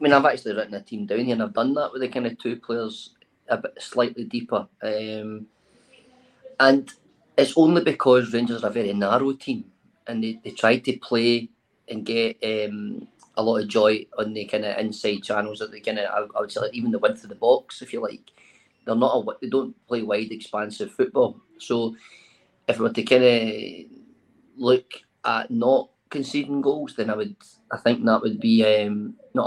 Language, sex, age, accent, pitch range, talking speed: English, male, 30-49, British, 110-135 Hz, 205 wpm